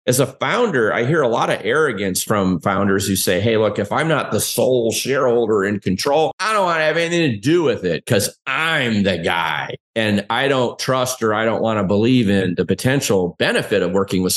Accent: American